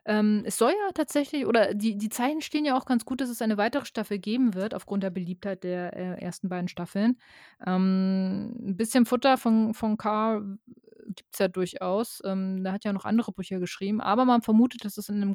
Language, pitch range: German, 190-230 Hz